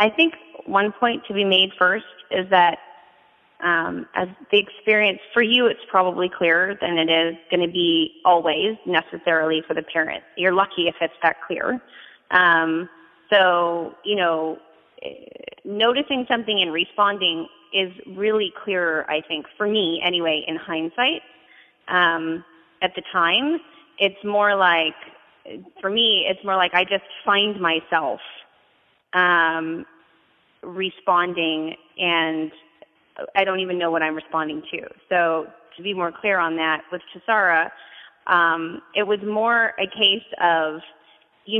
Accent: American